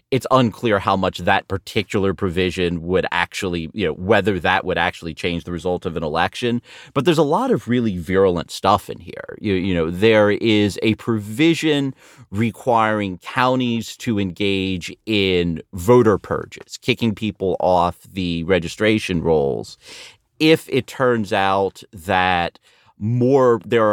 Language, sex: English, male